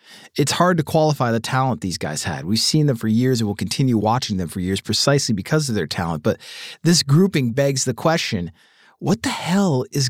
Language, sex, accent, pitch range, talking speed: English, male, American, 120-165 Hz, 215 wpm